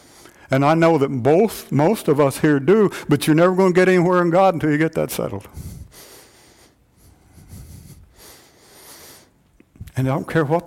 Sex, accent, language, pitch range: male, American, English, 145-175 Hz